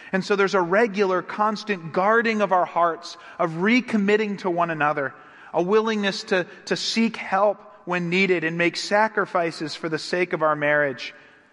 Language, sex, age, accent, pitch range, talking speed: English, male, 30-49, American, 150-185 Hz, 165 wpm